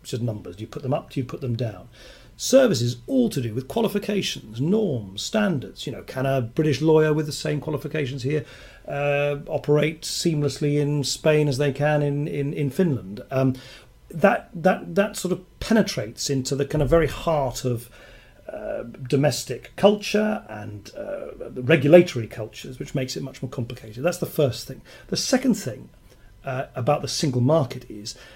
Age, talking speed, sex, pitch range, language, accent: 40-59, 180 wpm, male, 120-155 Hz, English, British